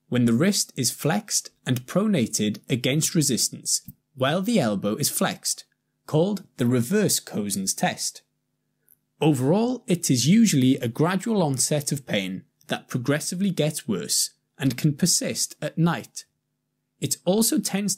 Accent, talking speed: British, 135 wpm